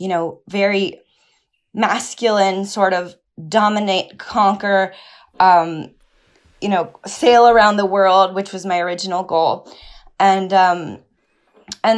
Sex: female